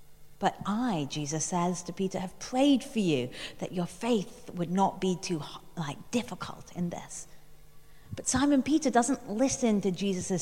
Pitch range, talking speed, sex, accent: 170-235 Hz, 160 wpm, female, British